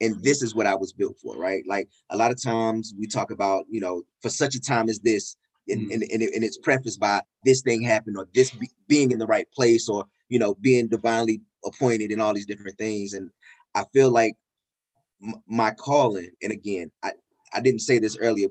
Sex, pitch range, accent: male, 110-135 Hz, American